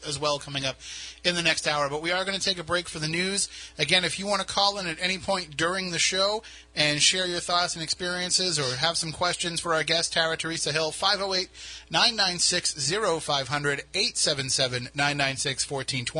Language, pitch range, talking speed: English, 135-170 Hz, 185 wpm